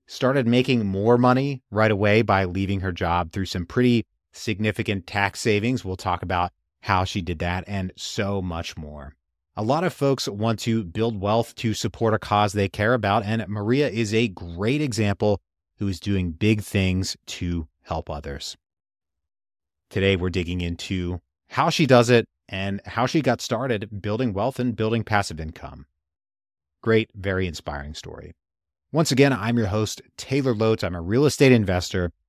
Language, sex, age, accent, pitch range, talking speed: English, male, 30-49, American, 85-115 Hz, 170 wpm